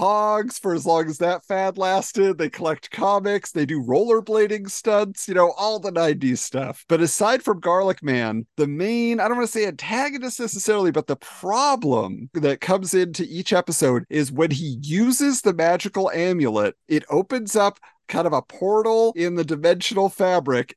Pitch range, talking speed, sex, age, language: 150-210 Hz, 175 wpm, male, 40-59, English